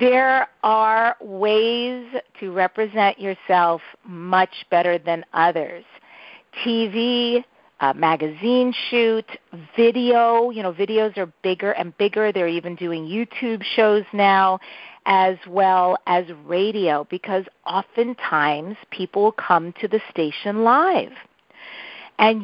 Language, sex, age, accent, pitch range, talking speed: English, female, 40-59, American, 180-230 Hz, 105 wpm